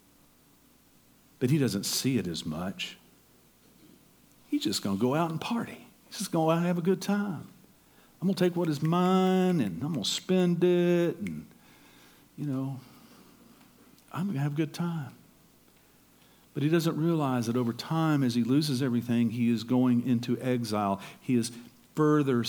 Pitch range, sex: 120-175 Hz, male